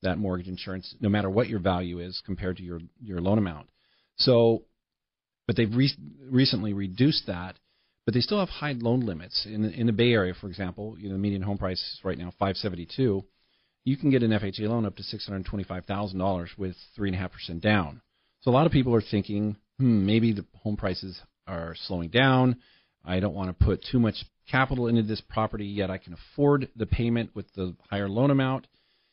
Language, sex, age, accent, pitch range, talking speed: English, male, 40-59, American, 95-115 Hz, 195 wpm